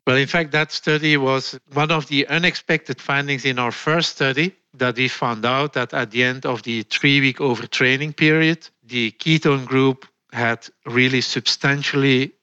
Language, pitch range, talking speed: English, 120-140 Hz, 165 wpm